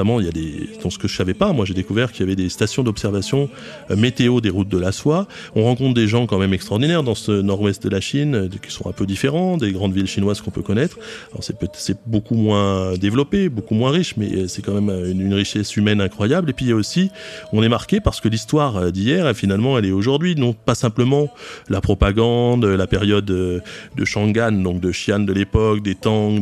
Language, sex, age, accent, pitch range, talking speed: French, male, 30-49, French, 100-130 Hz, 240 wpm